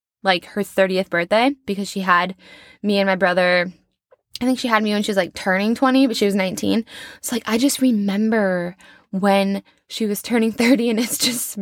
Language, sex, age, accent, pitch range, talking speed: English, female, 10-29, American, 185-230 Hz, 200 wpm